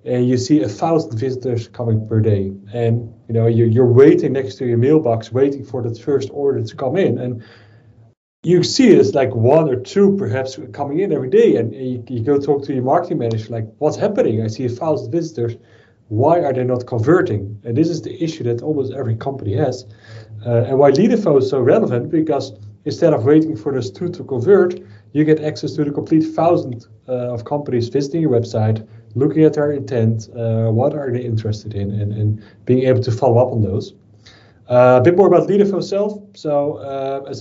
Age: 30-49